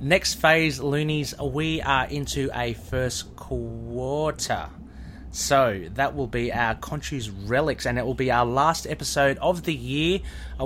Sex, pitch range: male, 110-140 Hz